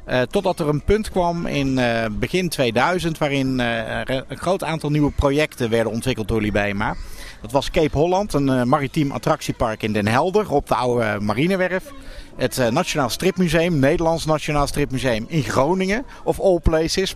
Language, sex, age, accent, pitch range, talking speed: Dutch, male, 50-69, Dutch, 125-160 Hz, 170 wpm